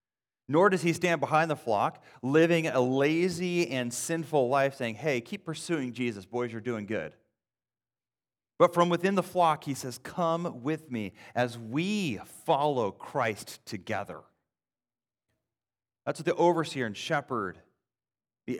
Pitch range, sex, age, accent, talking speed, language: 100-140 Hz, male, 30-49, American, 140 wpm, English